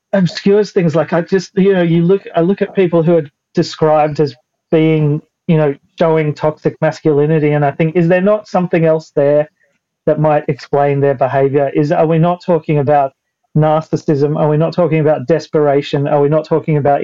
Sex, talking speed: male, 195 wpm